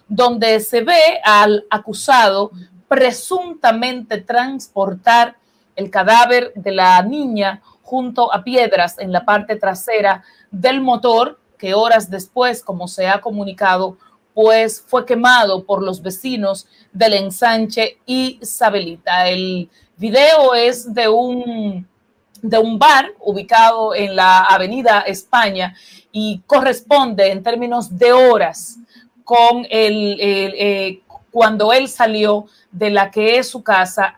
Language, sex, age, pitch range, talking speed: Spanish, female, 40-59, 195-235 Hz, 125 wpm